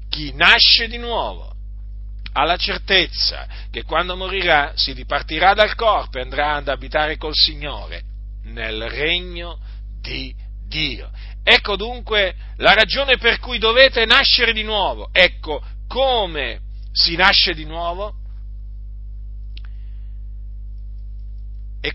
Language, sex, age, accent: Italian, male, 50-69, native